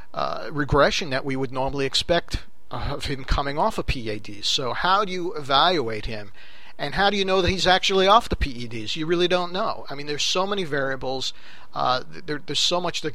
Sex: male